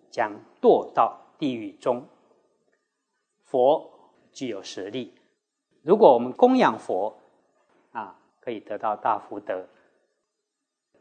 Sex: male